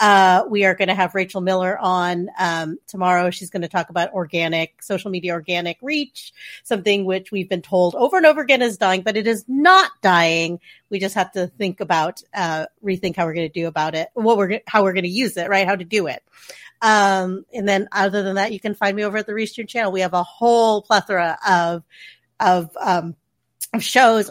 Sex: female